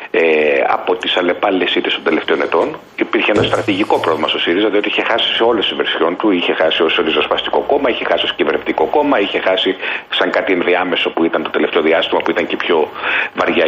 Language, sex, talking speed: Greek, male, 200 wpm